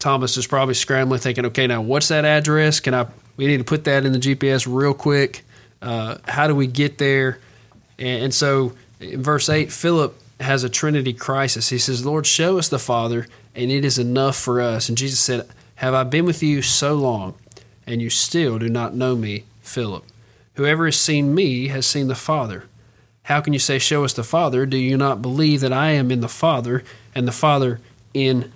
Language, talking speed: English, 210 wpm